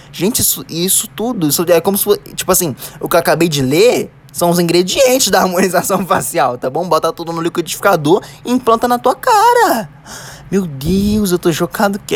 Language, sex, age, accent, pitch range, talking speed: Portuguese, male, 10-29, Brazilian, 135-185 Hz, 195 wpm